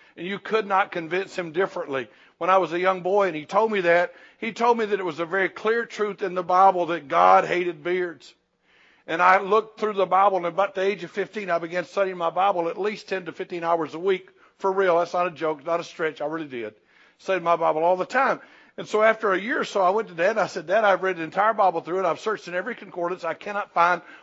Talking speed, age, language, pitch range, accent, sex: 265 wpm, 60-79, English, 170-200 Hz, American, male